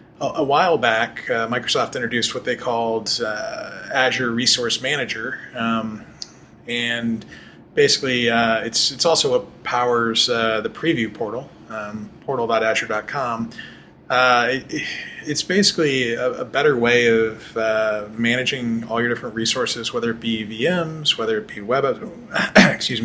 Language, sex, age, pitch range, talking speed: English, male, 20-39, 110-125 Hz, 140 wpm